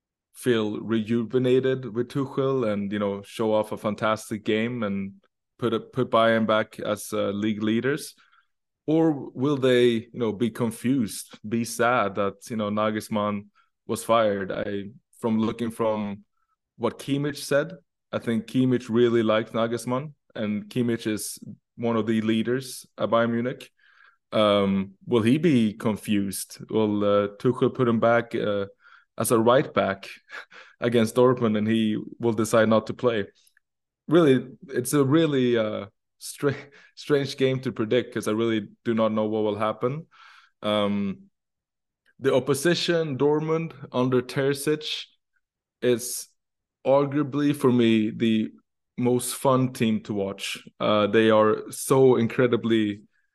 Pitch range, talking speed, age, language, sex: 110-130 Hz, 140 wpm, 20-39, English, male